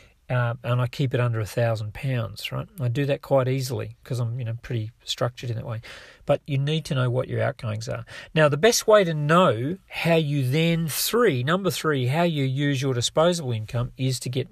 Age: 40-59